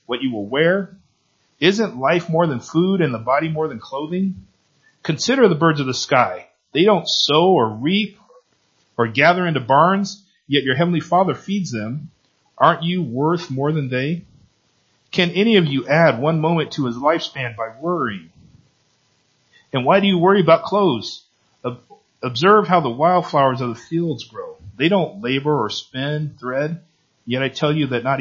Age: 40-59